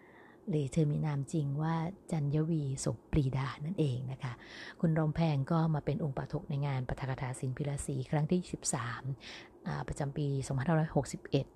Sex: female